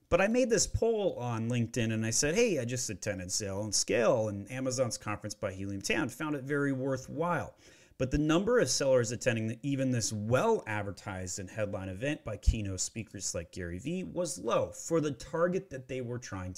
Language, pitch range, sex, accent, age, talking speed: English, 105-145 Hz, male, American, 30-49, 195 wpm